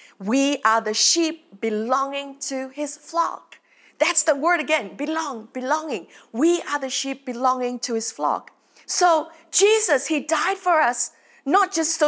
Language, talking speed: English, 155 wpm